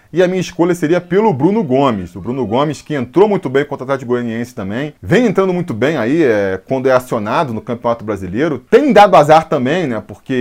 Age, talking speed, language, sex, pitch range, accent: 20-39, 220 wpm, Portuguese, male, 125-175 Hz, Brazilian